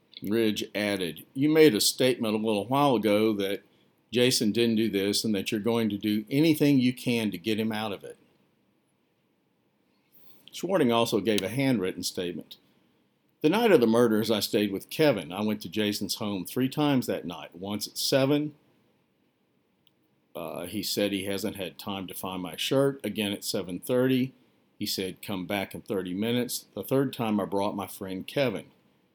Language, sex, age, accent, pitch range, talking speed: English, male, 50-69, American, 100-125 Hz, 175 wpm